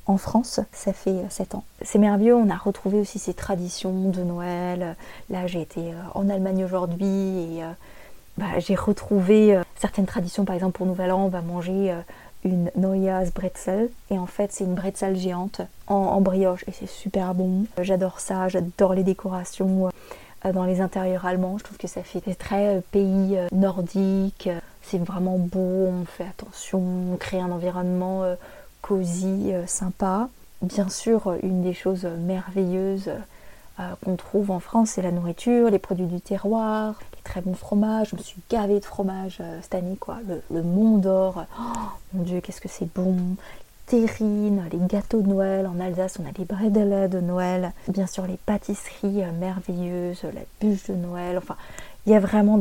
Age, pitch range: 20-39, 185-205 Hz